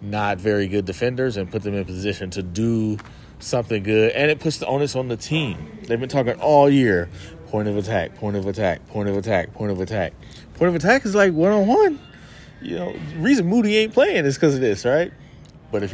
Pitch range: 100-140 Hz